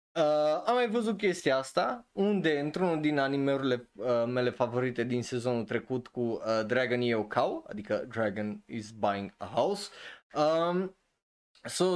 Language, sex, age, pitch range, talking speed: Romanian, male, 20-39, 125-200 Hz, 145 wpm